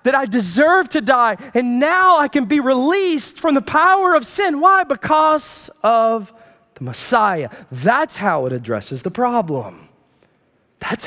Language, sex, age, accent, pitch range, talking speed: English, male, 30-49, American, 210-305 Hz, 150 wpm